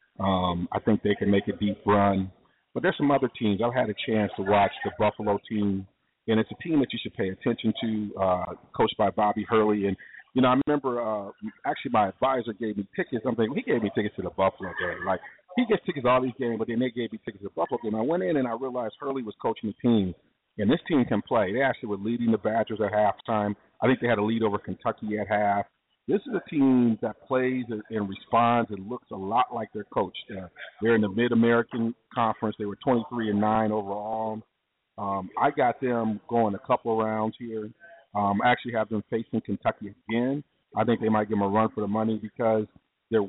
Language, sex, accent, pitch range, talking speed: English, male, American, 105-120 Hz, 230 wpm